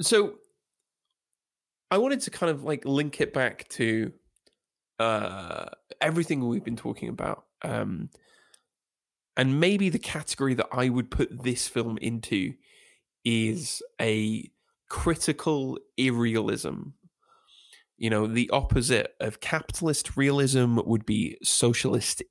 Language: English